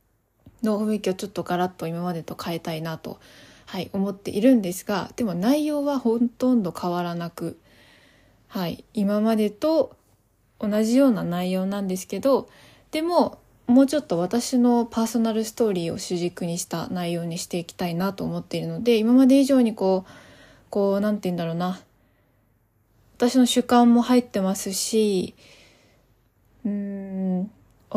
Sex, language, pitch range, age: female, Japanese, 180-230 Hz, 20-39